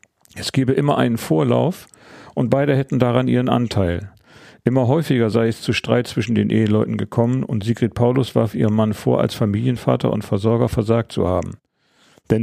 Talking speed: 175 wpm